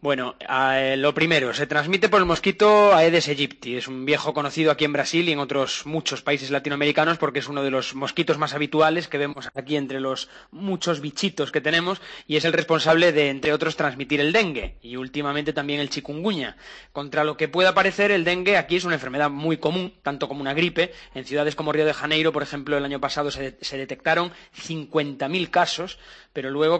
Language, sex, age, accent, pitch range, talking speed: Spanish, male, 20-39, Spanish, 140-160 Hz, 205 wpm